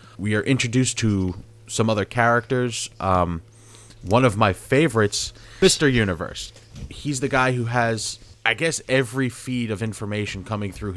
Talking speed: 150 wpm